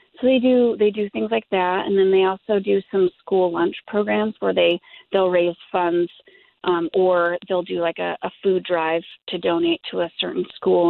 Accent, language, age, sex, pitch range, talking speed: American, English, 30-49, female, 170-215 Hz, 205 wpm